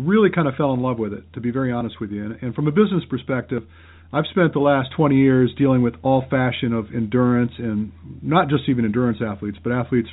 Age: 50-69